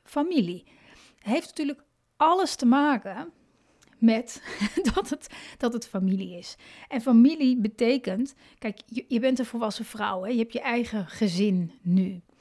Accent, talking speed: Dutch, 130 wpm